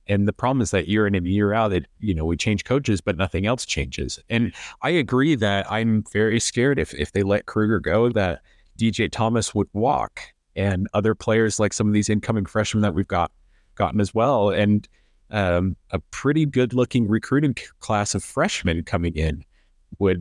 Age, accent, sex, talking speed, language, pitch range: 30-49, American, male, 195 wpm, English, 90-115 Hz